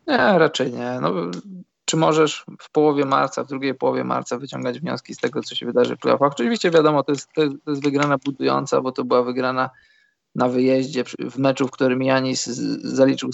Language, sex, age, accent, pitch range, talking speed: Polish, male, 20-39, native, 130-145 Hz, 200 wpm